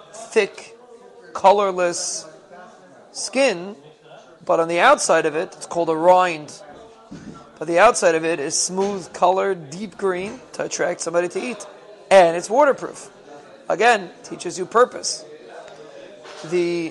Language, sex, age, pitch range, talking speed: English, male, 30-49, 170-195 Hz, 130 wpm